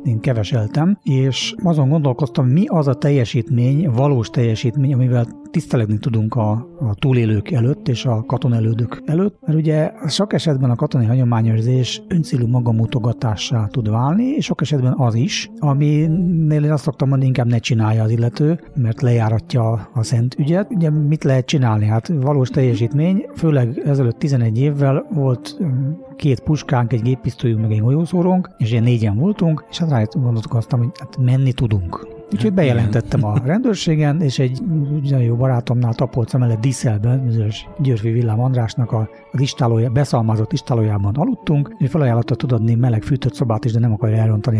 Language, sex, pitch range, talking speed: Hungarian, male, 115-150 Hz, 155 wpm